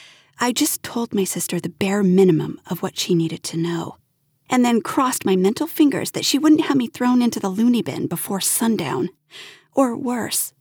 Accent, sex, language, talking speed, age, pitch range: American, female, English, 190 wpm, 30-49, 200-300 Hz